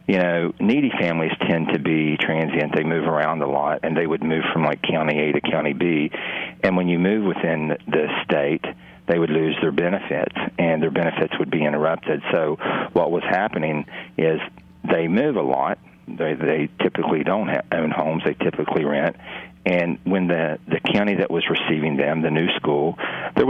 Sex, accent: male, American